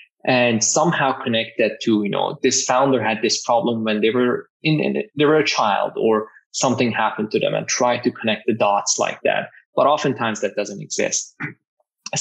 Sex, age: male, 20-39